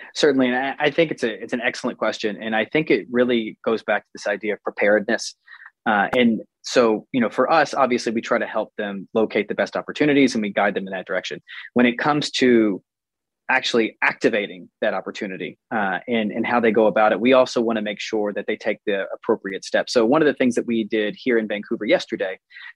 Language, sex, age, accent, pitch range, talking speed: English, male, 20-39, American, 105-125 Hz, 225 wpm